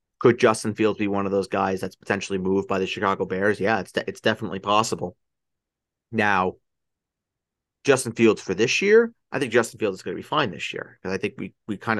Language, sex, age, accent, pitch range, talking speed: English, male, 30-49, American, 95-110 Hz, 220 wpm